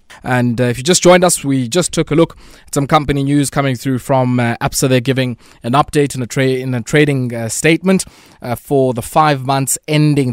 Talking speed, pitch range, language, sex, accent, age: 225 wpm, 125-160 Hz, English, male, South African, 20-39